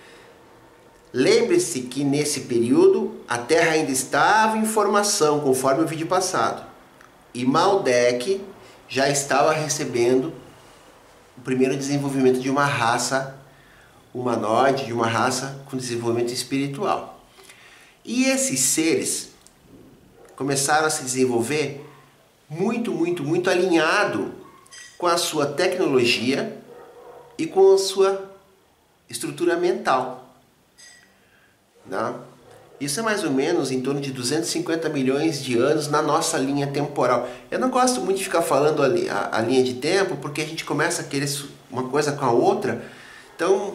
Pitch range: 130-195 Hz